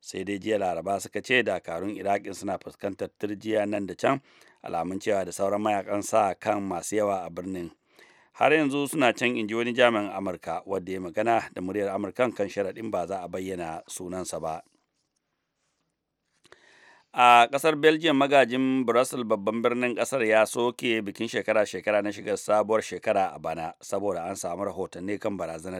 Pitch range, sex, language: 95-110 Hz, male, English